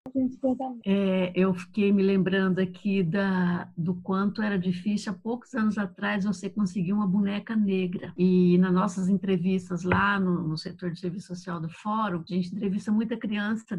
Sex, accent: female, Brazilian